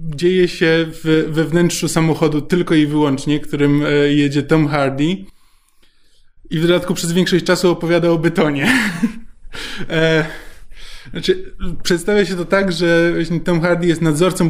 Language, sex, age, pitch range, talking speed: Polish, male, 20-39, 145-175 Hz, 130 wpm